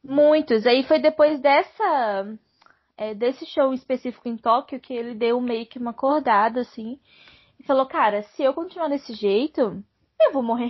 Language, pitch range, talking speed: Portuguese, 235-310 Hz, 155 wpm